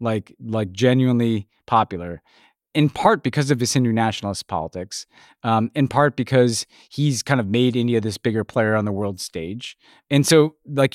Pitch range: 100-130 Hz